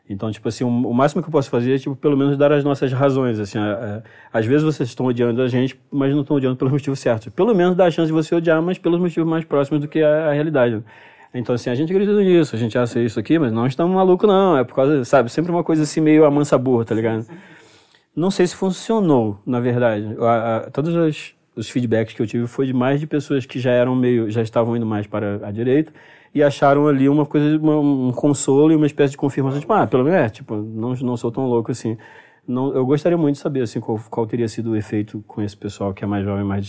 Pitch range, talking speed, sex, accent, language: 110-145 Hz, 260 wpm, male, Brazilian, Portuguese